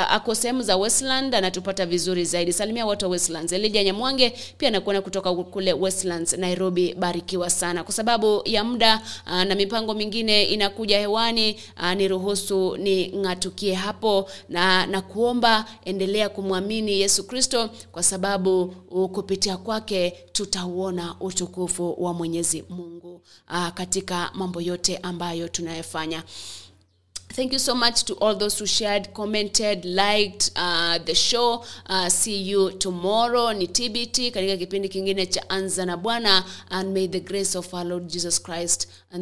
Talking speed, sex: 135 wpm, female